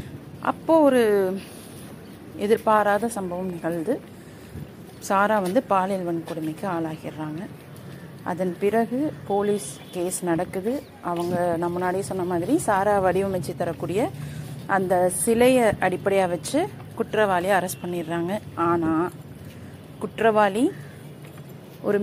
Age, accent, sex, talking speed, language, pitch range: 30-49, native, female, 85 wpm, Tamil, 175-215 Hz